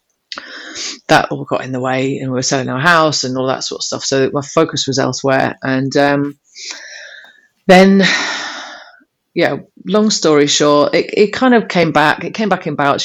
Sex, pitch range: female, 135-165 Hz